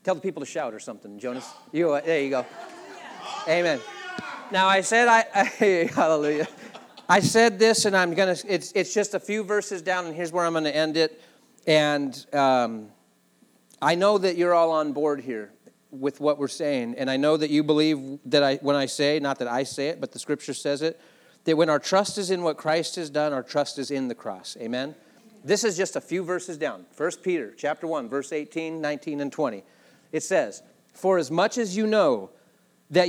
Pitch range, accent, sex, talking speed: 150-220 Hz, American, male, 215 wpm